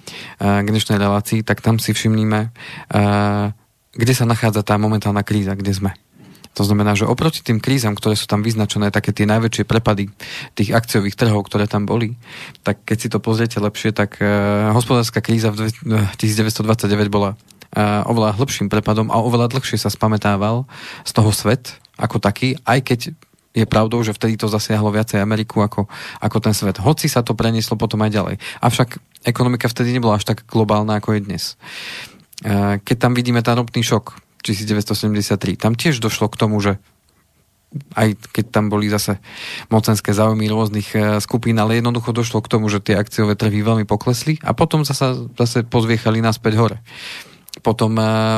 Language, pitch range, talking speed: Slovak, 105-120 Hz, 165 wpm